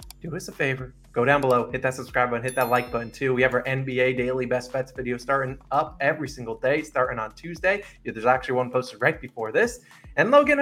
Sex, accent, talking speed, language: male, American, 230 wpm, English